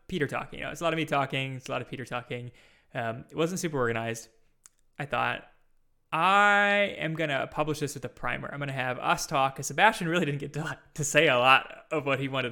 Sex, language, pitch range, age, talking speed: male, English, 125-155 Hz, 20-39, 235 wpm